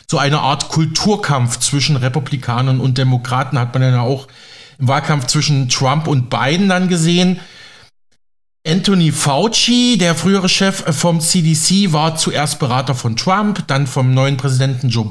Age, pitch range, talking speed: 40-59, 130-170 Hz, 145 wpm